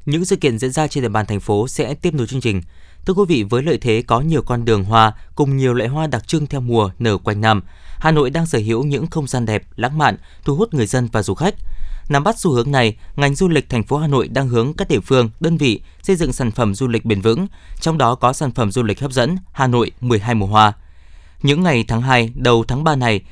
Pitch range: 110-150 Hz